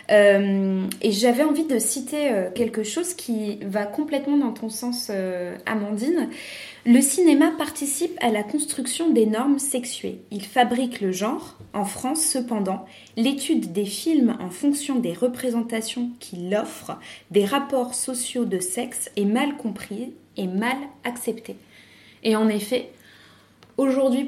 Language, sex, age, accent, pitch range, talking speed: French, female, 20-39, French, 195-250 Hz, 140 wpm